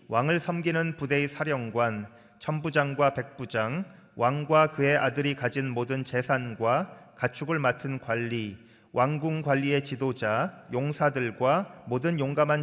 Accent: native